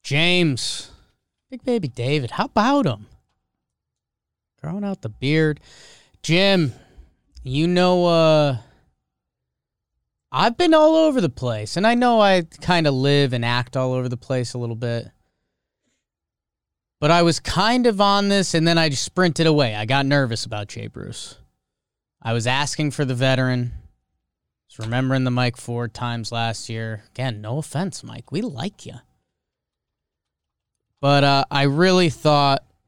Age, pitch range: 20-39, 115-150 Hz